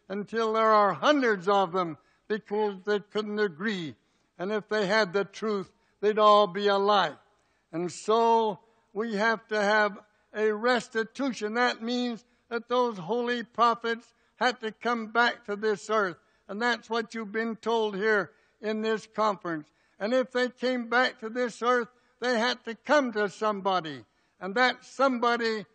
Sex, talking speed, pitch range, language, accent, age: male, 160 wpm, 200-230 Hz, English, American, 60-79